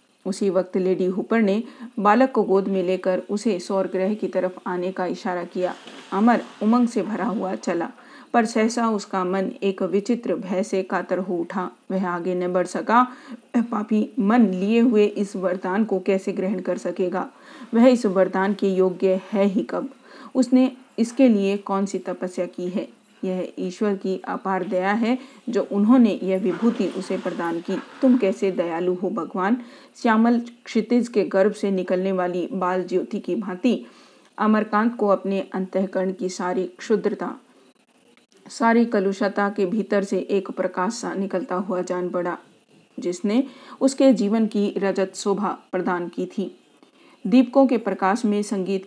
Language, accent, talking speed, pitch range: Hindi, native, 155 wpm, 185-225 Hz